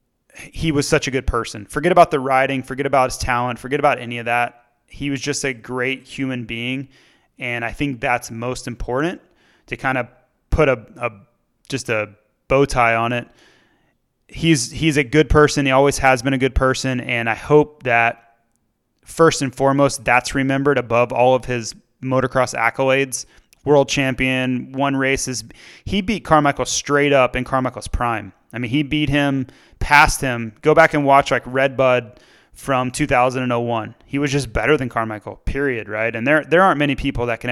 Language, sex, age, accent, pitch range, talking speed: English, male, 30-49, American, 120-140 Hz, 185 wpm